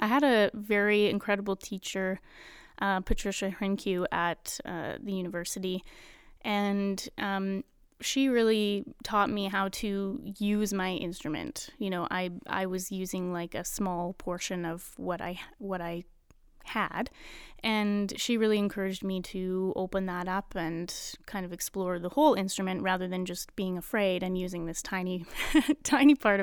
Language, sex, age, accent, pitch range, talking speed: English, female, 20-39, American, 185-215 Hz, 150 wpm